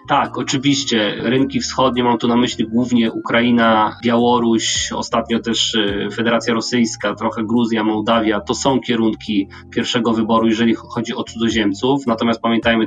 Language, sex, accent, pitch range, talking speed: Polish, male, native, 110-120 Hz, 135 wpm